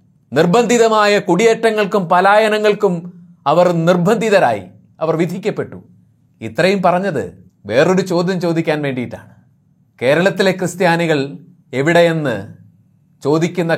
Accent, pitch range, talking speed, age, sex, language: native, 160-215 Hz, 75 wpm, 30-49, male, Malayalam